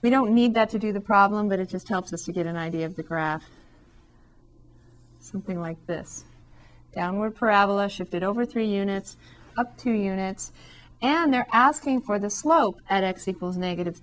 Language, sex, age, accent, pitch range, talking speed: English, female, 40-59, American, 185-225 Hz, 180 wpm